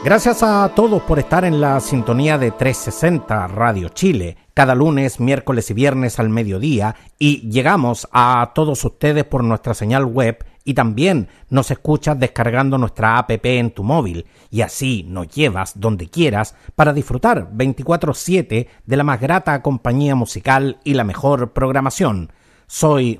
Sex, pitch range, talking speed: male, 115-150 Hz, 150 wpm